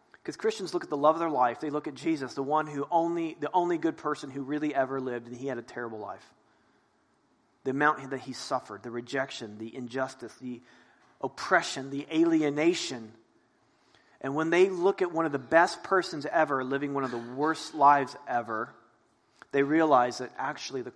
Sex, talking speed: male, 190 wpm